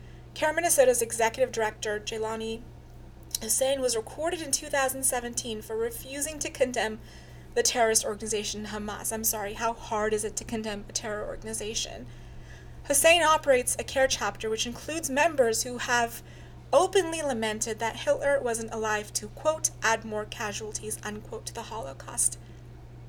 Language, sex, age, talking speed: English, female, 30-49, 140 wpm